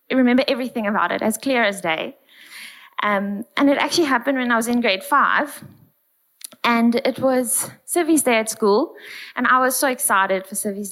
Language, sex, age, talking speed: English, female, 20-39, 180 wpm